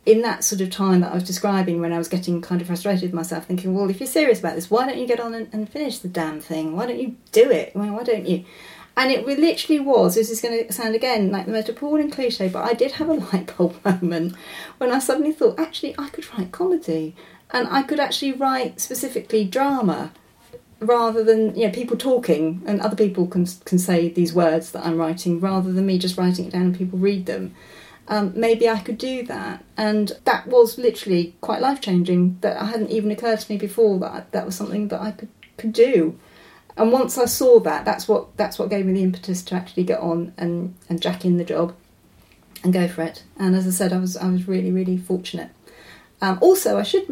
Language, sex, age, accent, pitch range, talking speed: English, female, 40-59, British, 180-240 Hz, 235 wpm